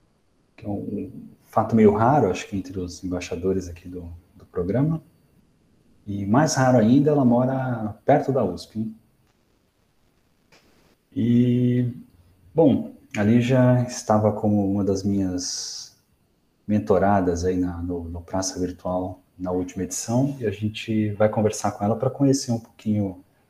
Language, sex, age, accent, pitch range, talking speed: Portuguese, male, 30-49, Brazilian, 95-125 Hz, 140 wpm